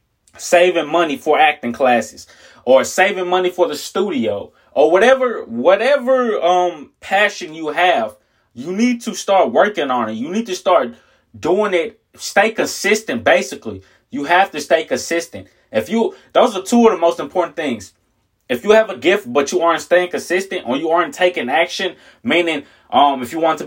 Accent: American